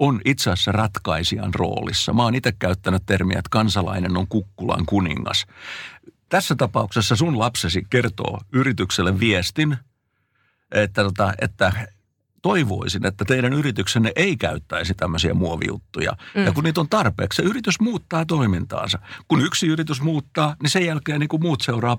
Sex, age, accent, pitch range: male, 60-79, native, 95-145 Hz